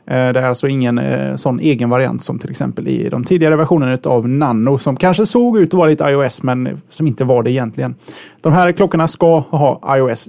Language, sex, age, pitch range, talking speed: Swedish, male, 30-49, 130-160 Hz, 205 wpm